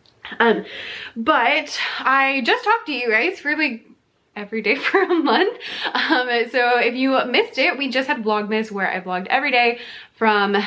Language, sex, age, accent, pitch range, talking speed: English, female, 20-39, American, 200-275 Hz, 170 wpm